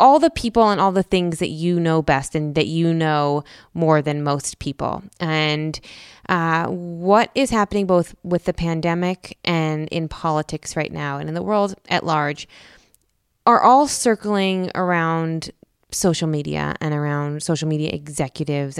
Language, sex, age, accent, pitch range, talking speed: English, female, 20-39, American, 145-175 Hz, 160 wpm